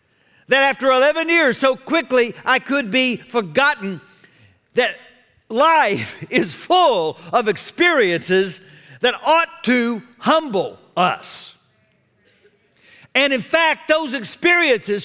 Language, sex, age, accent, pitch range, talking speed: English, male, 50-69, American, 210-275 Hz, 105 wpm